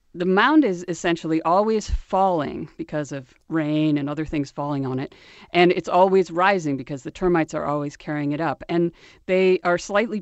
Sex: female